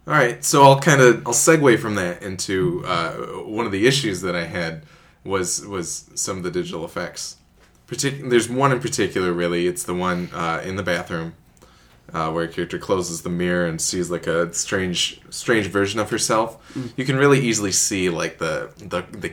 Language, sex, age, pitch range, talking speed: English, male, 20-39, 90-130 Hz, 195 wpm